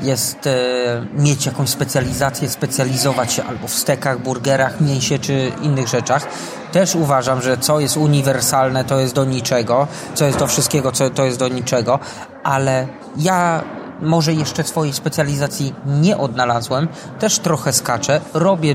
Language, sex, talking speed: Polish, male, 140 wpm